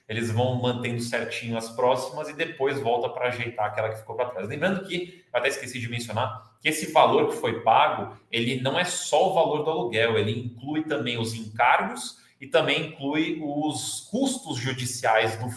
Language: Portuguese